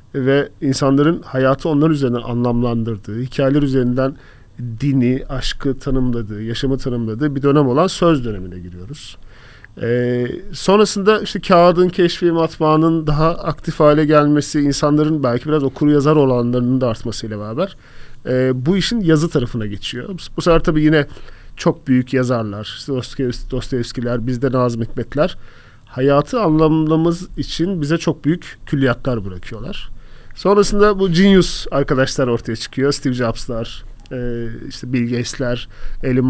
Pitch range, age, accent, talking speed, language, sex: 120-155 Hz, 40-59, native, 135 wpm, Turkish, male